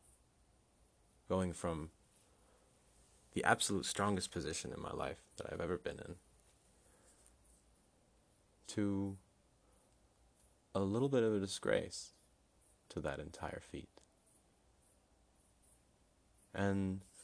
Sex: male